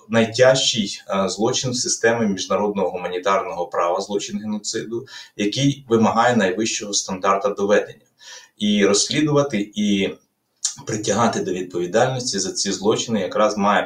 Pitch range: 95-115 Hz